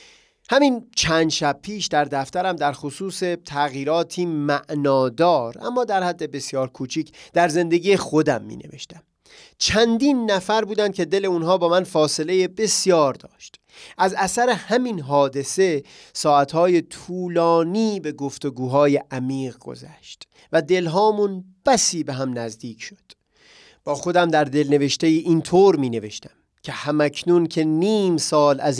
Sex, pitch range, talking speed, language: male, 135-180 Hz, 130 wpm, Persian